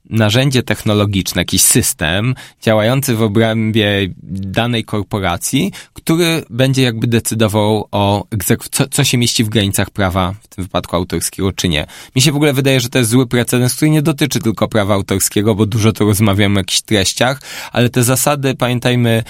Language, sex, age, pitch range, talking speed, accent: Polish, male, 20-39, 105-130 Hz, 170 wpm, native